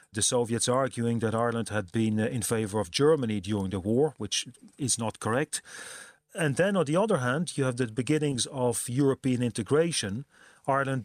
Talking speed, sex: 175 wpm, male